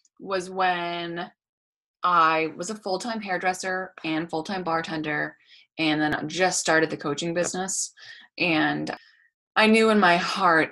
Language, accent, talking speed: English, American, 130 wpm